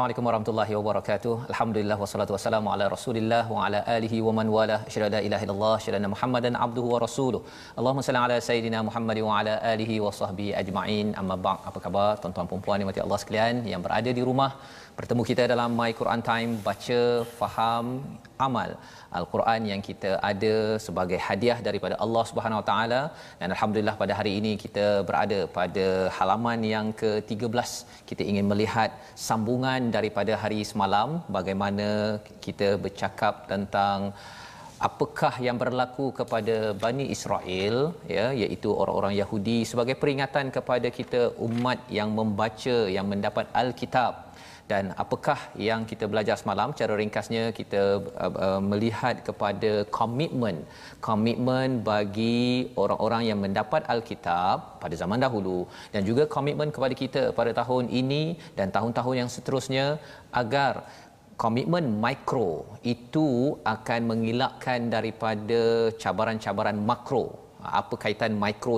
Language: Malayalam